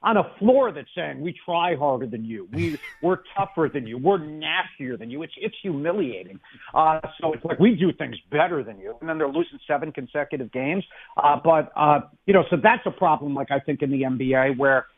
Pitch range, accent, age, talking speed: 145-175 Hz, American, 50-69, 220 wpm